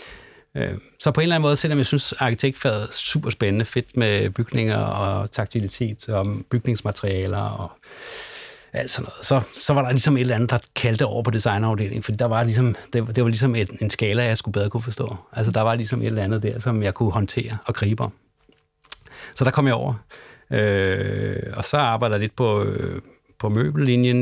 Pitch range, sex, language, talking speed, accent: 105-125 Hz, male, Danish, 205 wpm, native